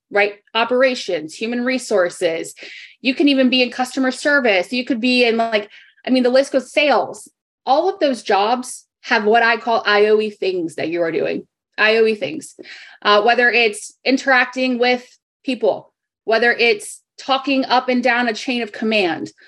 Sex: female